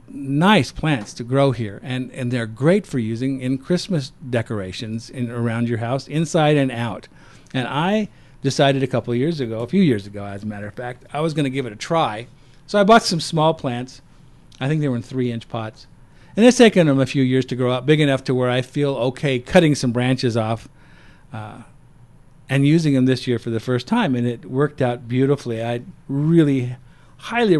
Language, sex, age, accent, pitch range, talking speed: English, male, 50-69, American, 125-155 Hz, 215 wpm